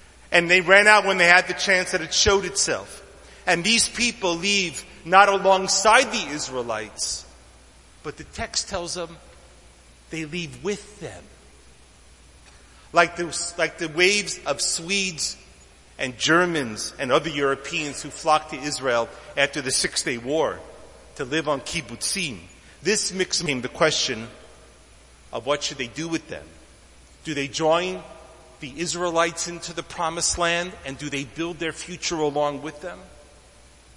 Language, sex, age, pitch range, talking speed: English, male, 40-59, 120-175 Hz, 145 wpm